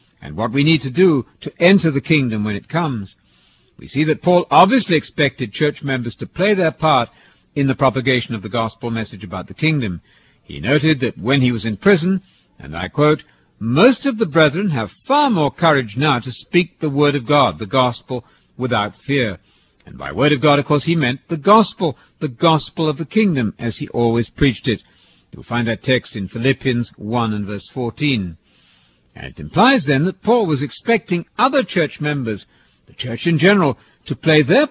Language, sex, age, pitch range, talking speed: English, male, 60-79, 115-165 Hz, 195 wpm